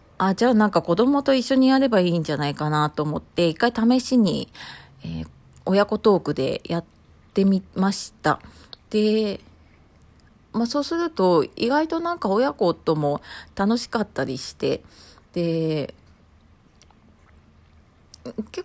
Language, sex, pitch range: Japanese, female, 155-220 Hz